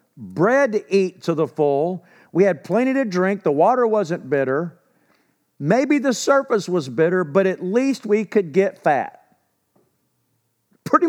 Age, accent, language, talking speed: 50-69, American, English, 150 wpm